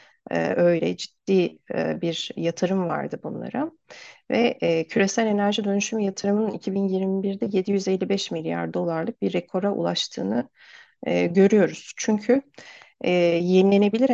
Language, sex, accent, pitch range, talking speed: Turkish, female, native, 175-220 Hz, 100 wpm